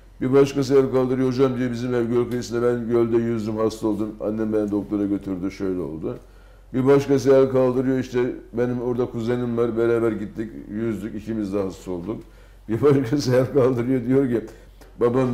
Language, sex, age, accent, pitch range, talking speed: Turkish, male, 60-79, native, 110-140 Hz, 170 wpm